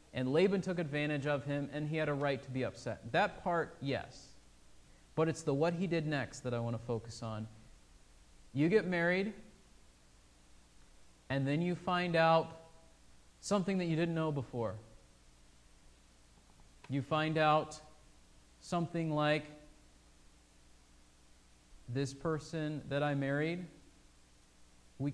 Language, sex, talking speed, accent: English, male, 130 wpm, American